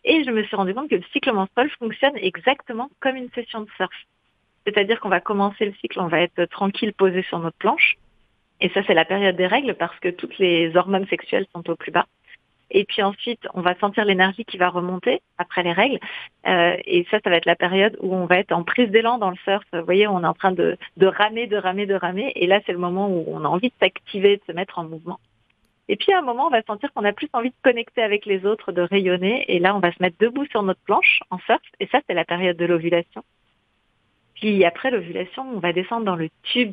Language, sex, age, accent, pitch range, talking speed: French, female, 40-59, French, 175-220 Hz, 255 wpm